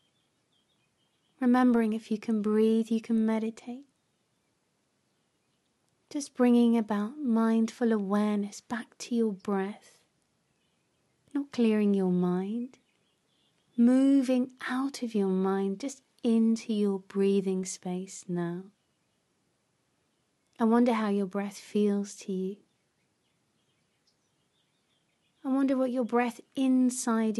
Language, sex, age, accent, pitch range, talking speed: English, female, 30-49, British, 205-245 Hz, 100 wpm